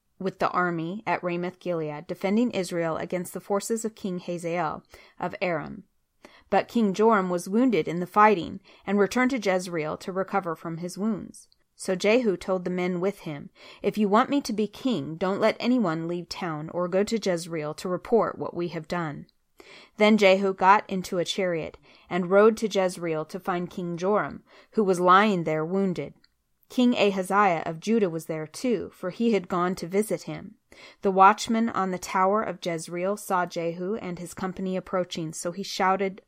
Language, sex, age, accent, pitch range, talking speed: English, female, 30-49, American, 175-215 Hz, 180 wpm